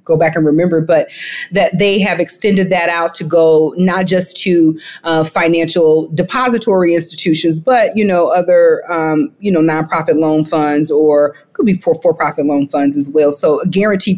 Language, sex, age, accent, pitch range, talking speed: English, female, 40-59, American, 160-220 Hz, 175 wpm